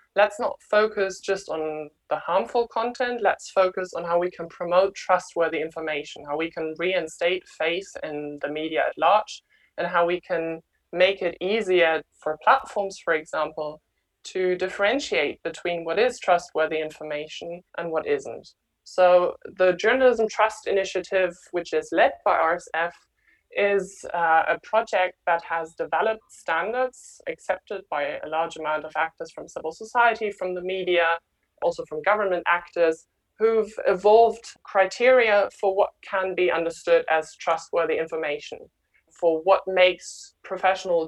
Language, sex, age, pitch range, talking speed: English, male, 20-39, 165-210 Hz, 145 wpm